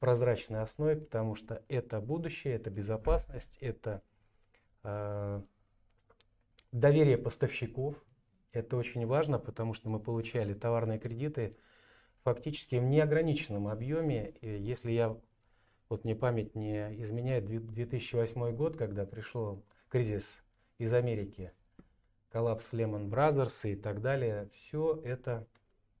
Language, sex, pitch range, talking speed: Russian, male, 110-125 Hz, 110 wpm